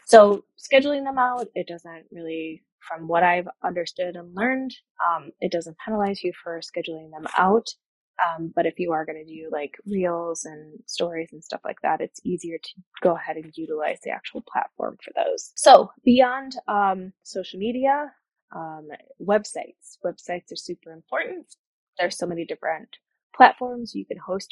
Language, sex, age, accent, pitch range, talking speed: English, female, 20-39, American, 170-220 Hz, 170 wpm